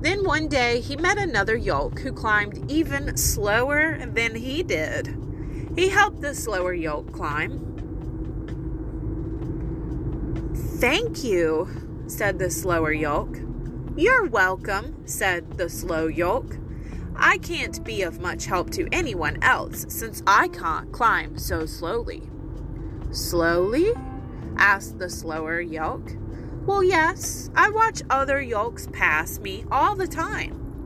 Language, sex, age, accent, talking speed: English, female, 30-49, American, 125 wpm